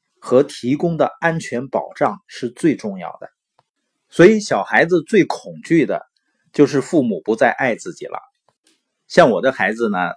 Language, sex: Chinese, male